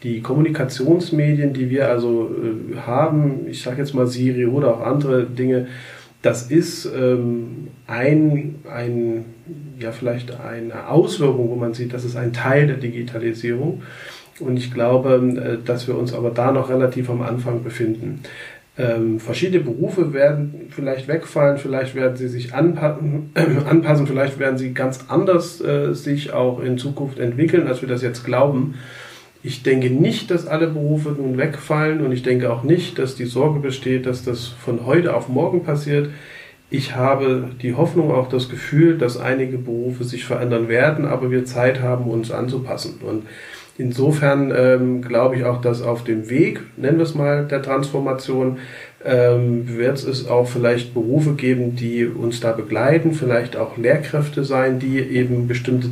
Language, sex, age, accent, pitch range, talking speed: German, male, 40-59, German, 120-145 Hz, 160 wpm